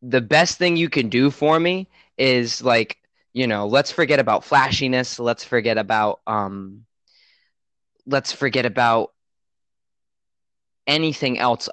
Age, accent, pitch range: 20-39, American, 105-125 Hz